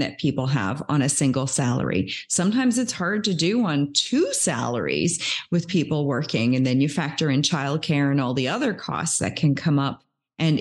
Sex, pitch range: female, 145-185 Hz